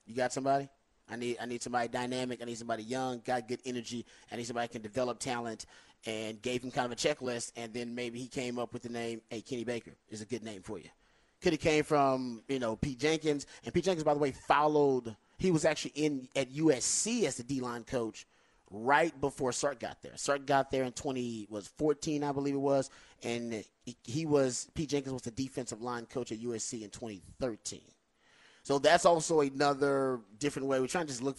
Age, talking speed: 30-49, 220 wpm